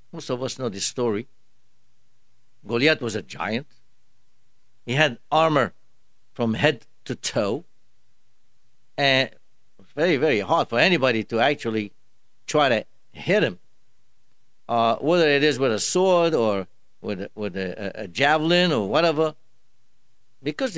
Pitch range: 110-160 Hz